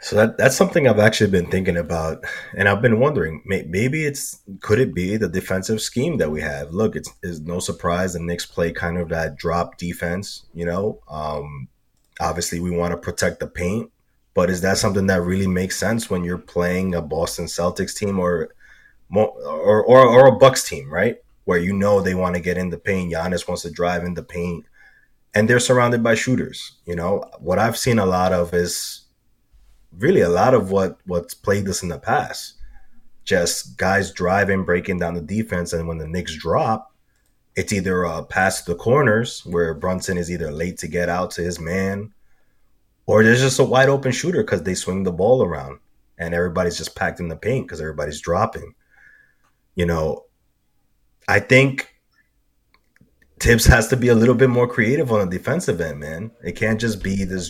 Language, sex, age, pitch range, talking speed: English, male, 20-39, 85-110 Hz, 195 wpm